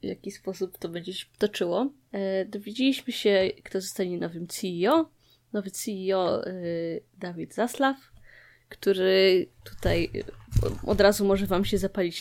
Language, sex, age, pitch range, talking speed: Polish, female, 20-39, 185-230 Hz, 135 wpm